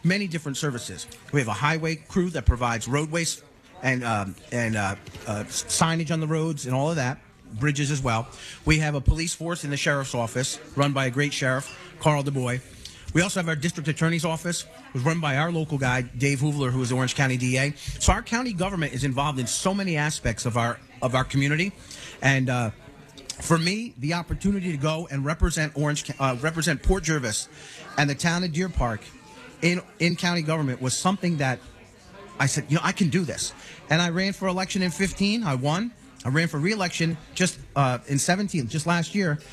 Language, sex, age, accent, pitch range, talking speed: English, male, 40-59, American, 130-170 Hz, 205 wpm